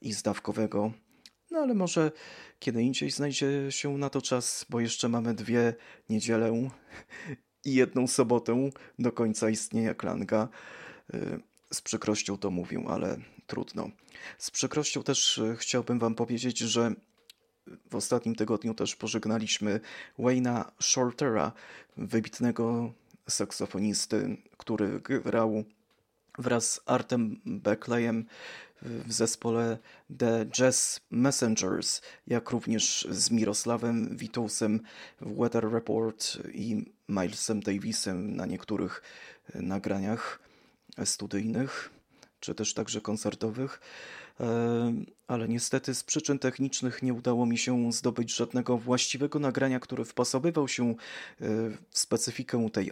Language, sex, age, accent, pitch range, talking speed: Polish, male, 20-39, native, 110-125 Hz, 110 wpm